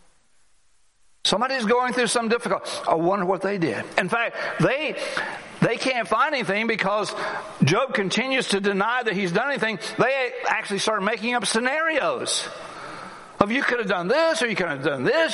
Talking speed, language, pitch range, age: 170 wpm, English, 180-245 Hz, 60-79